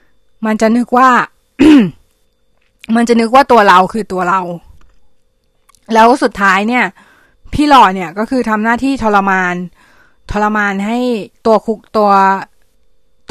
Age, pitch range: 20-39, 195-245 Hz